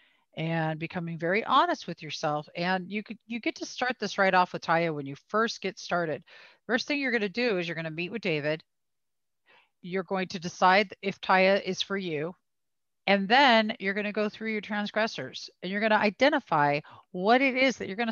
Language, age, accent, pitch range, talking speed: English, 40-59, American, 175-230 Hz, 220 wpm